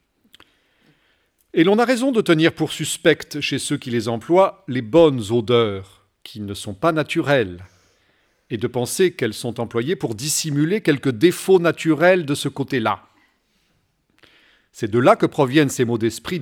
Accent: French